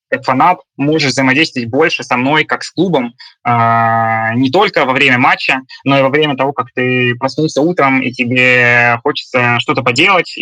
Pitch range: 120-145 Hz